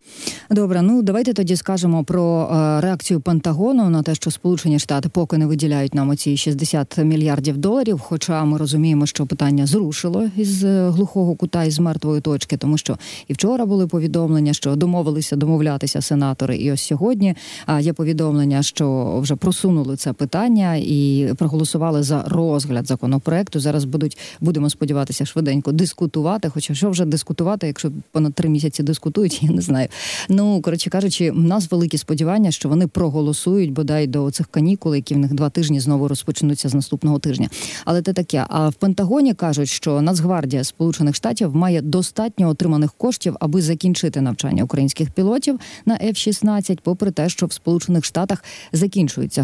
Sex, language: female, Ukrainian